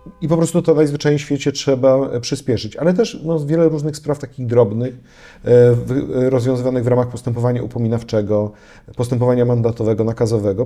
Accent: native